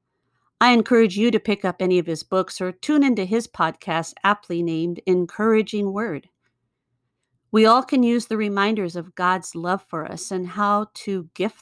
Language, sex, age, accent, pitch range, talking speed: English, female, 50-69, American, 165-220 Hz, 175 wpm